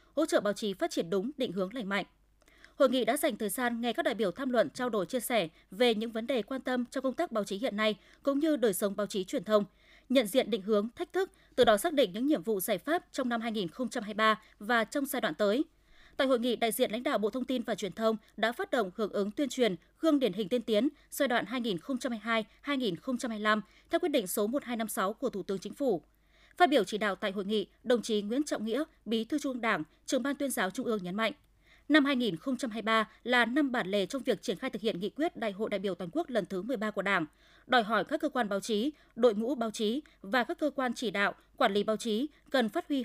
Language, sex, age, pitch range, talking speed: Vietnamese, female, 20-39, 210-275 Hz, 250 wpm